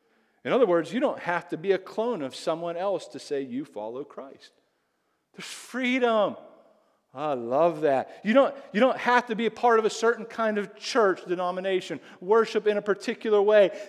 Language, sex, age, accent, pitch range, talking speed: English, male, 40-59, American, 130-215 Hz, 185 wpm